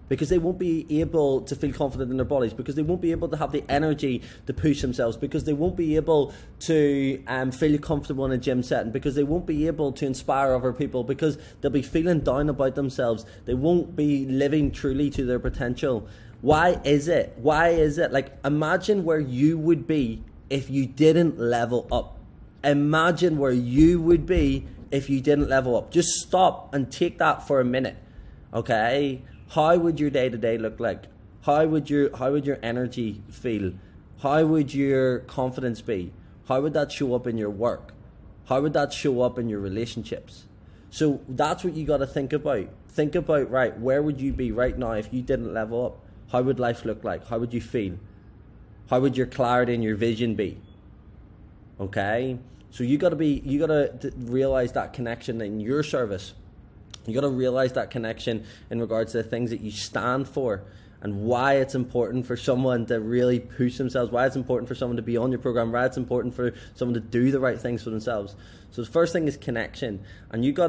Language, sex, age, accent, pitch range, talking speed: English, male, 20-39, British, 115-145 Hz, 200 wpm